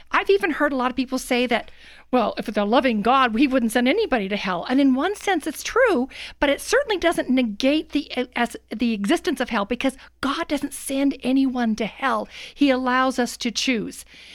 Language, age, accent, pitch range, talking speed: English, 50-69, American, 225-280 Hz, 210 wpm